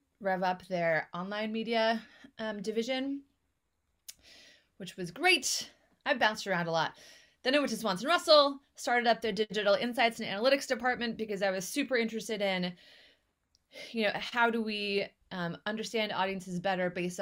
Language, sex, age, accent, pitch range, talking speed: English, female, 20-39, American, 175-230 Hz, 155 wpm